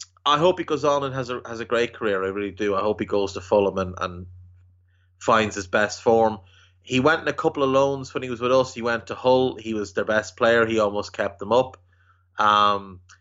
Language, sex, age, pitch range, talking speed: English, male, 30-49, 95-115 Hz, 240 wpm